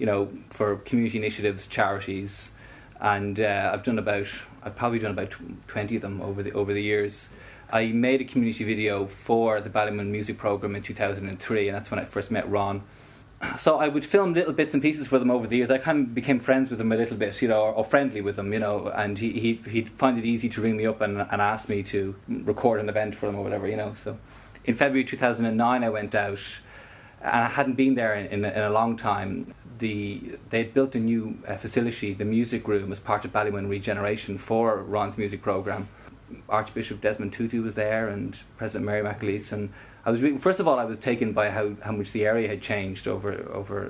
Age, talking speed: 20-39, 225 wpm